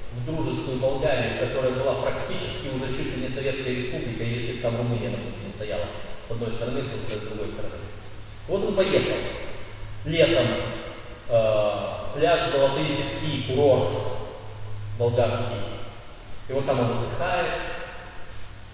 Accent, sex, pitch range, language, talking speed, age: native, male, 100-135 Hz, Russian, 125 wpm, 40-59